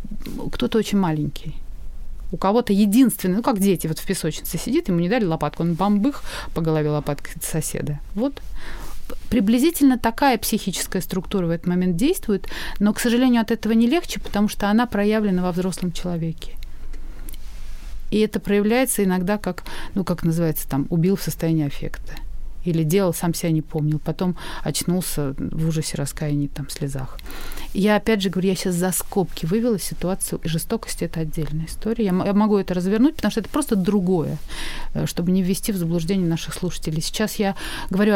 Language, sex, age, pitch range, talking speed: Russian, female, 30-49, 160-215 Hz, 170 wpm